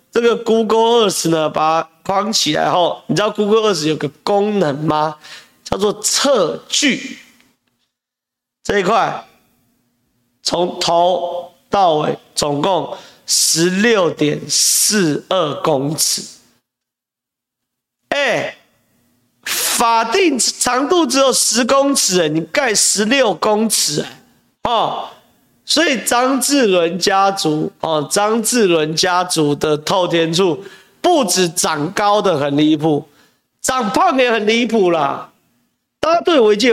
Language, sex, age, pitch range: Chinese, male, 40-59, 160-235 Hz